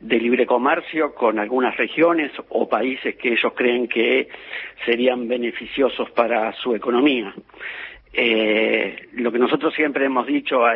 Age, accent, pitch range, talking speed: 50-69, Argentinian, 120-165 Hz, 140 wpm